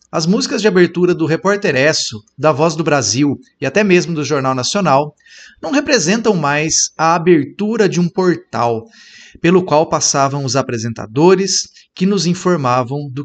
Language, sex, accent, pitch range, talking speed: Portuguese, male, Brazilian, 130-195 Hz, 150 wpm